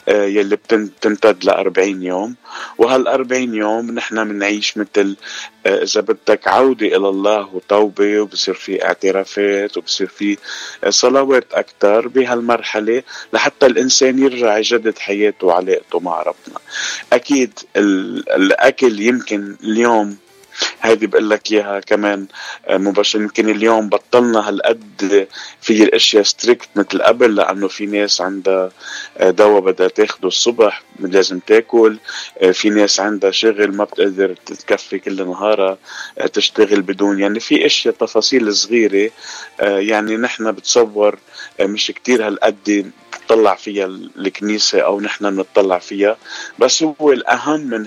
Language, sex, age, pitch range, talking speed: Arabic, male, 20-39, 100-115 Hz, 115 wpm